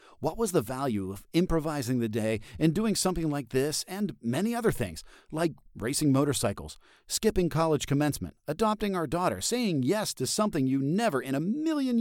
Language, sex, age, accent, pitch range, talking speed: English, male, 50-69, American, 115-170 Hz, 175 wpm